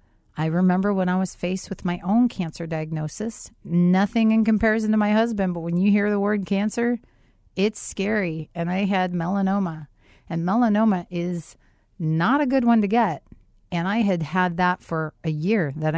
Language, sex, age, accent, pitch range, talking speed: English, female, 40-59, American, 150-185 Hz, 180 wpm